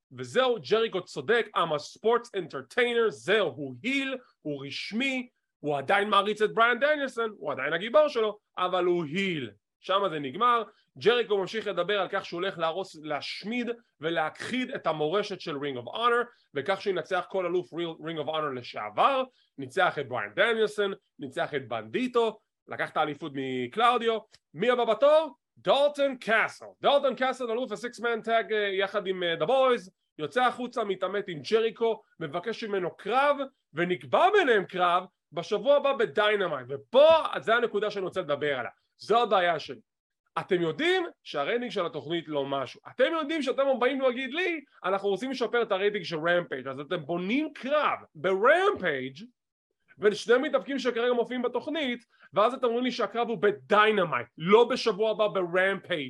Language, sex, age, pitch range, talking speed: English, male, 30-49, 175-245 Hz, 135 wpm